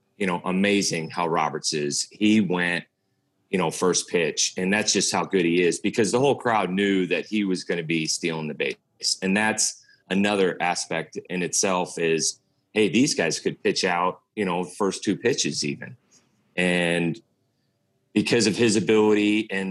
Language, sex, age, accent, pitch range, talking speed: English, male, 30-49, American, 90-105 Hz, 175 wpm